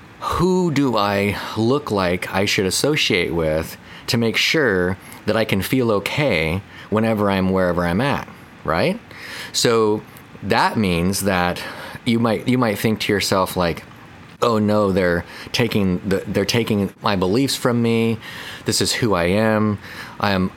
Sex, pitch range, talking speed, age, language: male, 90-115 Hz, 150 wpm, 30-49, English